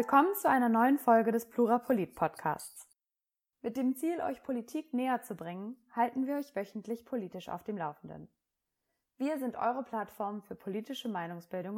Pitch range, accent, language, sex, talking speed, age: 180-250 Hz, German, German, female, 155 wpm, 20-39